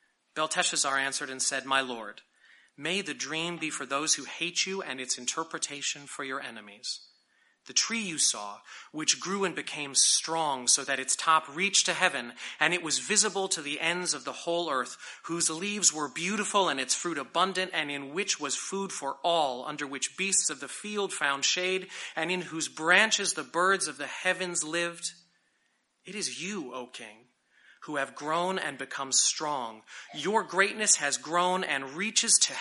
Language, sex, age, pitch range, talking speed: English, male, 30-49, 150-195 Hz, 180 wpm